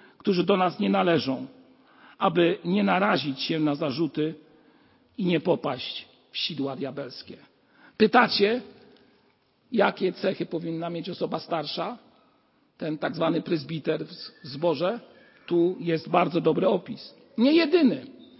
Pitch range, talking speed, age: 175-250 Hz, 120 wpm, 50-69